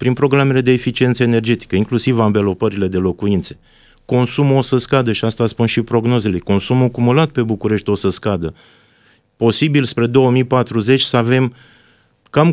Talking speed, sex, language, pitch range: 150 wpm, male, Romanian, 105-130 Hz